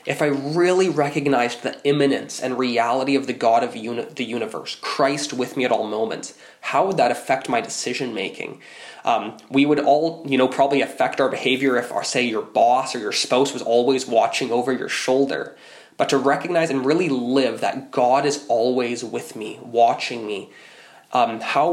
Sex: male